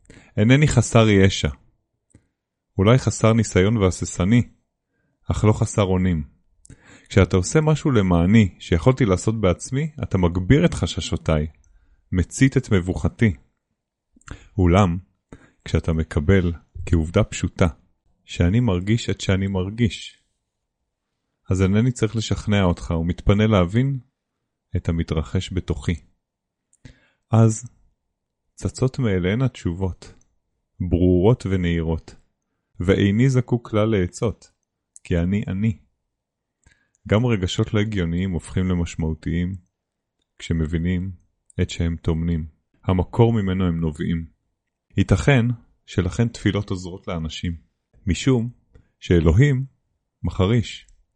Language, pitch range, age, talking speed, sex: Hebrew, 85-110 Hz, 30-49, 95 wpm, male